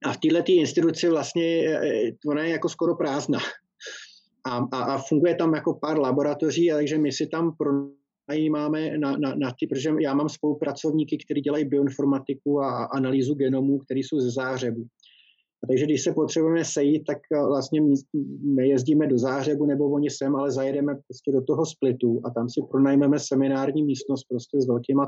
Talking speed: 170 wpm